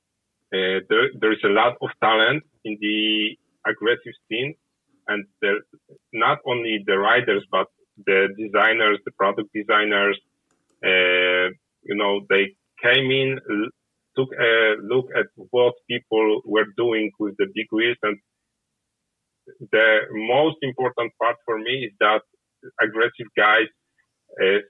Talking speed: 130 wpm